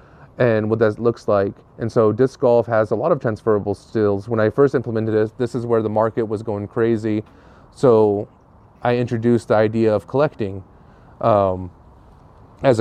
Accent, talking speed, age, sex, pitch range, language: American, 175 wpm, 30-49, male, 105-120 Hz, English